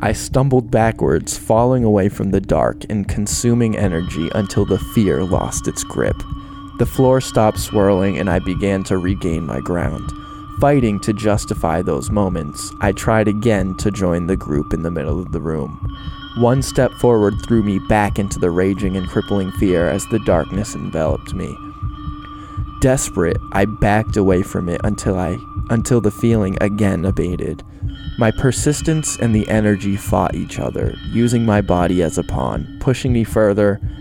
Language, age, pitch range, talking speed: English, 20-39, 90-110 Hz, 165 wpm